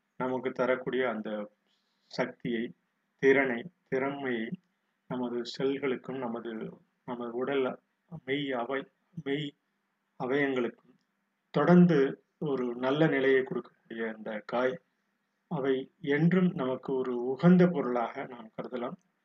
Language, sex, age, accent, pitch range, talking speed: Tamil, male, 30-49, native, 125-175 Hz, 95 wpm